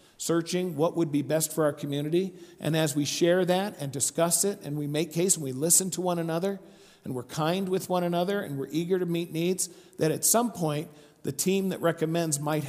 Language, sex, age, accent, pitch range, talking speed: English, male, 50-69, American, 145-185 Hz, 220 wpm